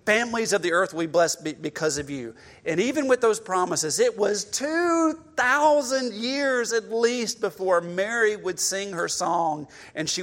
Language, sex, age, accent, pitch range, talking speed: English, male, 40-59, American, 170-240 Hz, 170 wpm